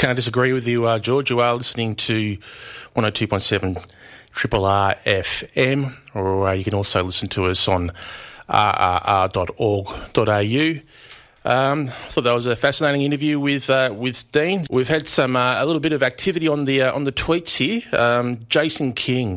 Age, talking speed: 30-49, 185 wpm